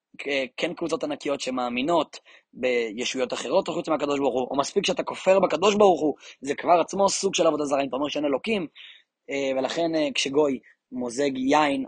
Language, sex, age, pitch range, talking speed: Hebrew, male, 20-39, 135-195 Hz, 165 wpm